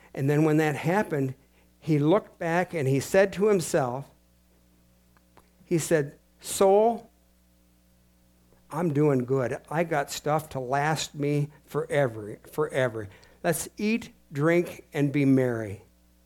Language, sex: English, male